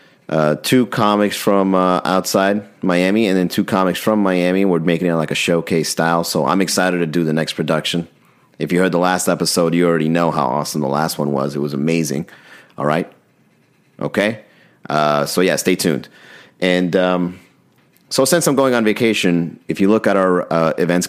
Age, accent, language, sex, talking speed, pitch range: 30-49, American, English, male, 195 wpm, 75-90 Hz